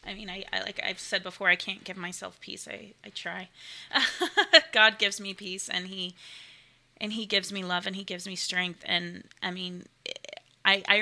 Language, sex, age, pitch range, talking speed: English, female, 20-39, 180-210 Hz, 200 wpm